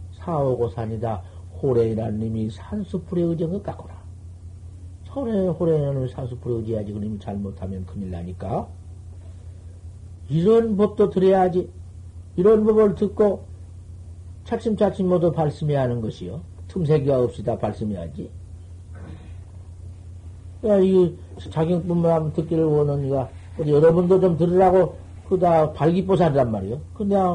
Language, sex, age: Korean, male, 50-69